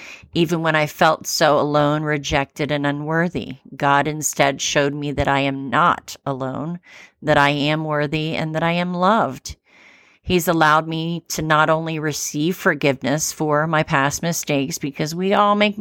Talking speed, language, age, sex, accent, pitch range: 165 wpm, English, 40-59, female, American, 140-160 Hz